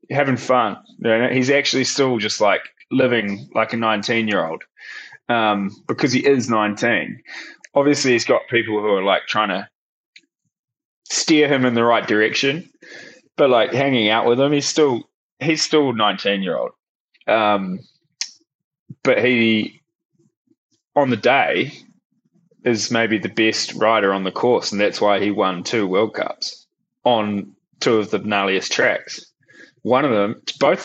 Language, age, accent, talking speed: English, 20-39, Australian, 150 wpm